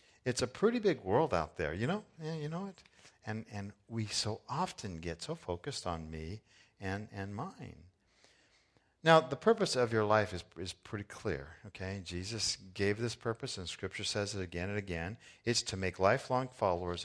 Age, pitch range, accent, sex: 50-69, 90-115 Hz, American, male